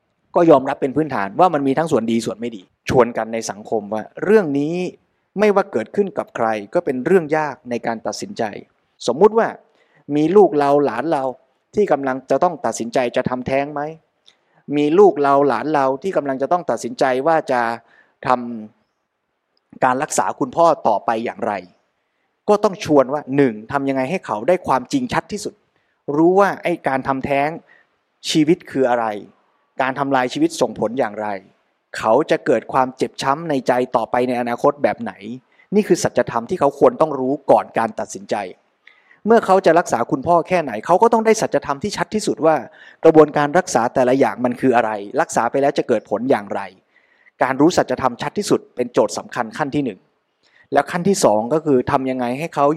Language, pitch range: Thai, 125-175 Hz